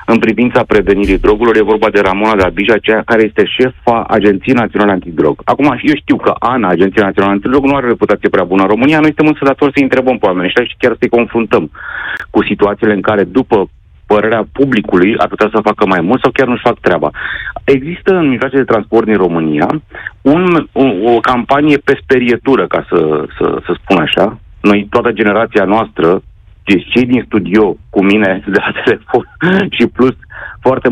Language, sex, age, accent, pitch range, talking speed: Romanian, male, 40-59, native, 95-130 Hz, 185 wpm